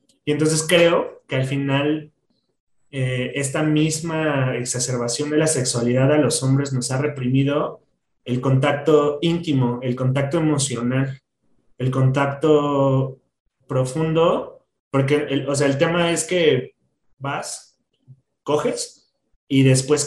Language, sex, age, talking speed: Spanish, male, 30-49, 120 wpm